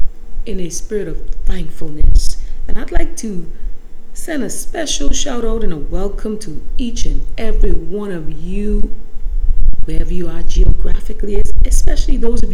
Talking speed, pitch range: 150 wpm, 165-225 Hz